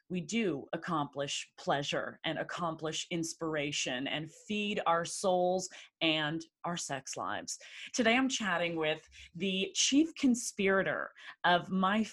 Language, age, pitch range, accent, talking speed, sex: English, 30-49, 160-210 Hz, American, 120 wpm, female